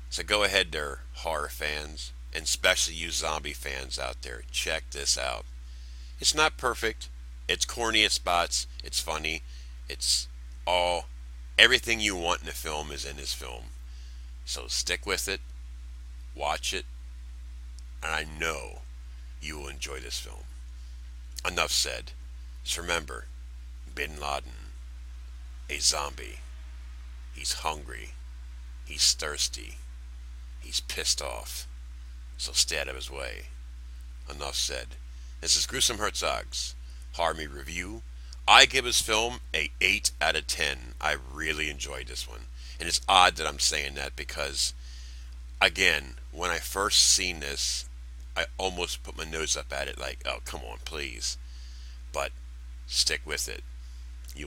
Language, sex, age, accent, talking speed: English, male, 50-69, American, 140 wpm